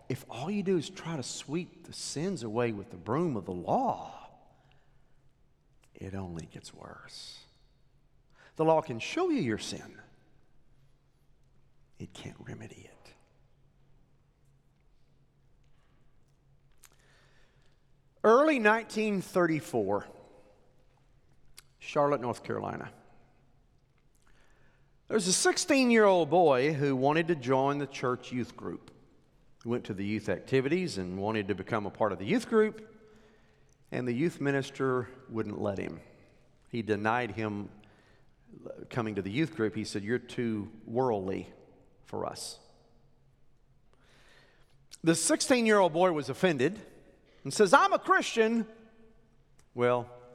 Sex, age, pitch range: male, 50-69, 115-165 Hz